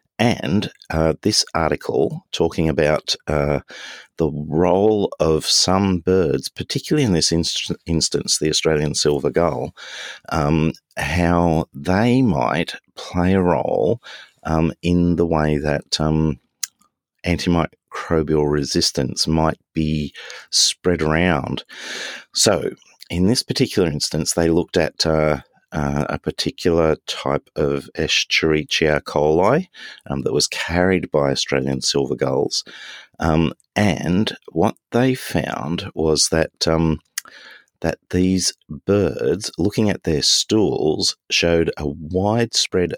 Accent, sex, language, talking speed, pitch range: Australian, male, English, 115 wpm, 75-90 Hz